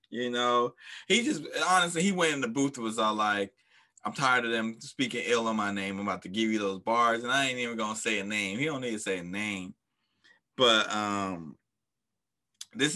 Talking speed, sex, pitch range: 225 wpm, male, 100-125 Hz